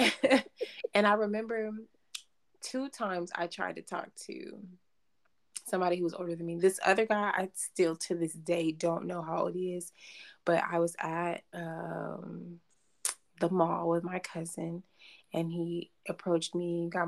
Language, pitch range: English, 170-190 Hz